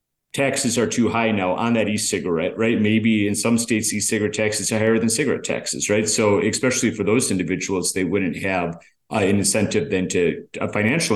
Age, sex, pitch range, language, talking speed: 30-49, male, 100-115 Hz, English, 195 wpm